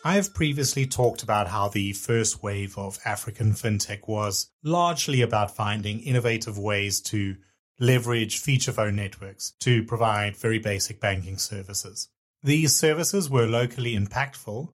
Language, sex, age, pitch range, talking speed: English, male, 30-49, 105-125 Hz, 140 wpm